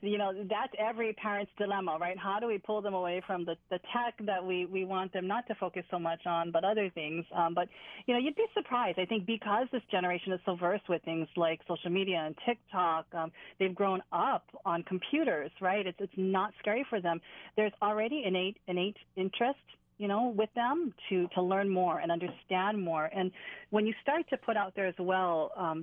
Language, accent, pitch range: English, American, 180-215 Hz